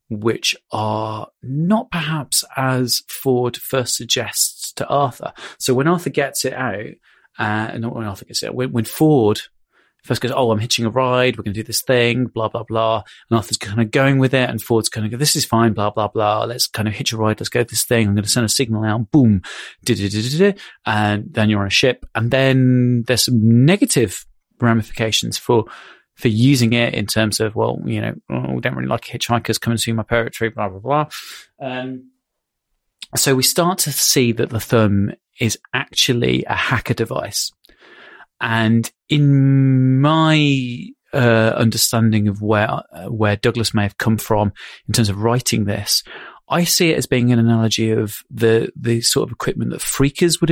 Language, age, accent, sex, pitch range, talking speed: English, 30-49, British, male, 110-135 Hz, 195 wpm